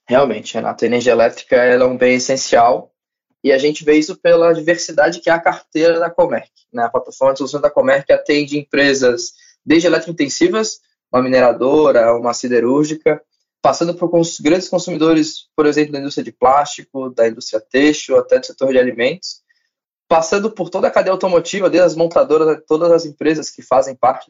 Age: 20-39